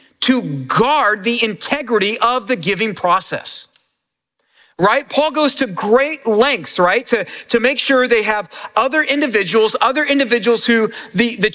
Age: 40-59